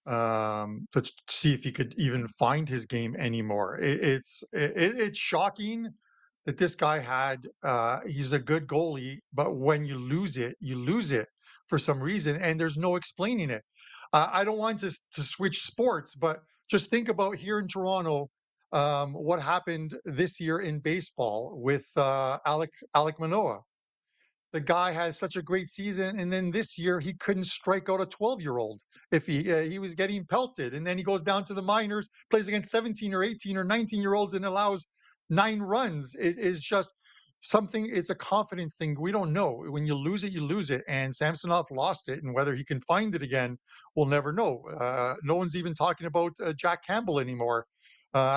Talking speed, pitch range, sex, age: 185 wpm, 145-195 Hz, male, 50-69